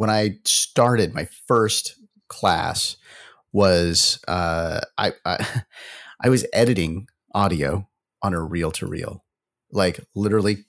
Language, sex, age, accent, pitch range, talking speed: English, male, 30-49, American, 95-125 Hz, 120 wpm